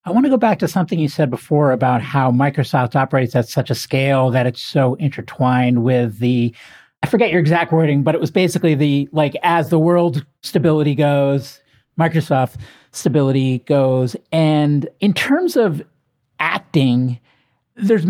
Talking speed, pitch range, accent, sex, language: 165 wpm, 145-190 Hz, American, male, English